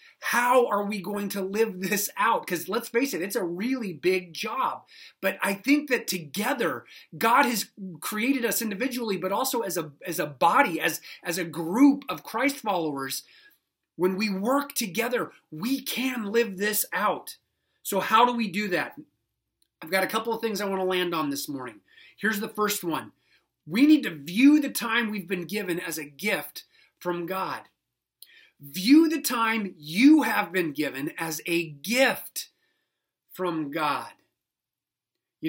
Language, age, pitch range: English, 30-49, 165-230 Hz